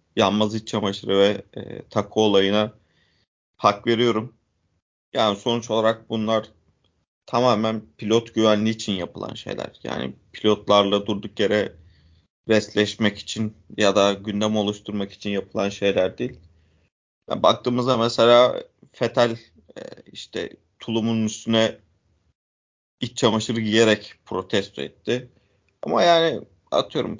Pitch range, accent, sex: 100-120 Hz, native, male